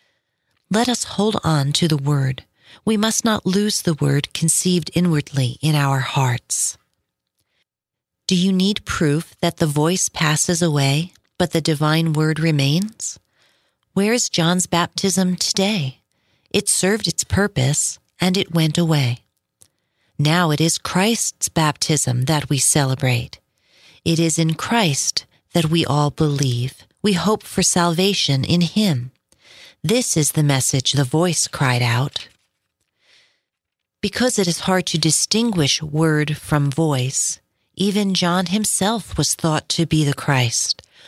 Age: 40-59